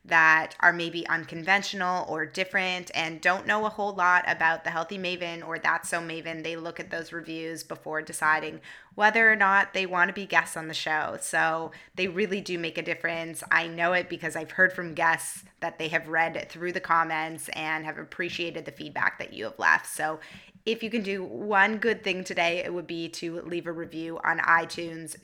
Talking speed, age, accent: 205 wpm, 20-39, American